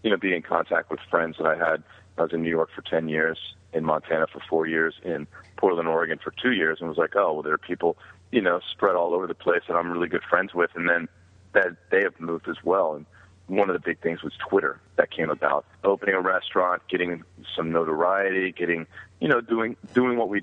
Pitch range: 80-95 Hz